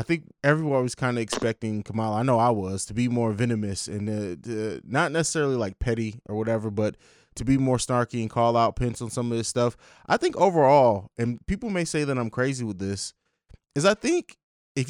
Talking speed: 220 wpm